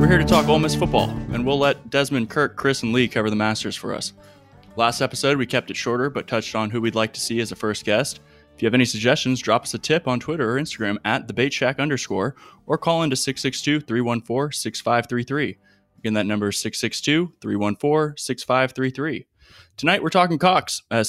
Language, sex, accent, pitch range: English, male, American, 110-135 Hz